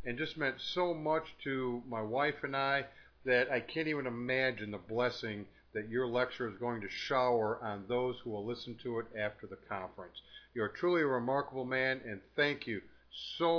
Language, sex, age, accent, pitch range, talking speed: English, male, 50-69, American, 120-155 Hz, 195 wpm